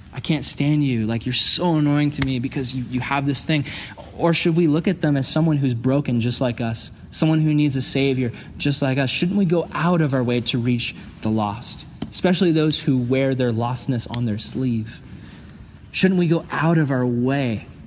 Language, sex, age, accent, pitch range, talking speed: English, male, 20-39, American, 135-190 Hz, 215 wpm